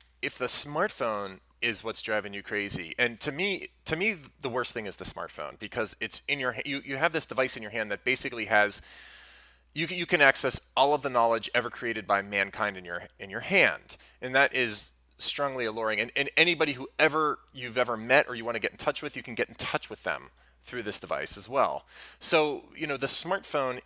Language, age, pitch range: English, 30-49, 105-145 Hz